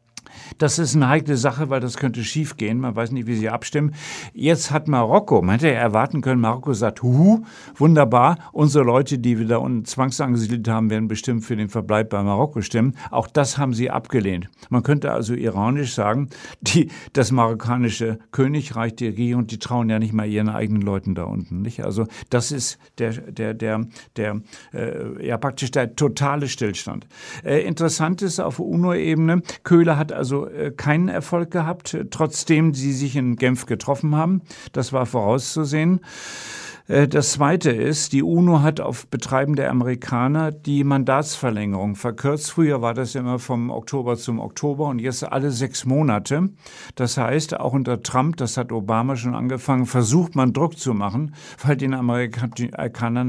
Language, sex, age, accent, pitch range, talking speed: German, male, 60-79, German, 115-145 Hz, 170 wpm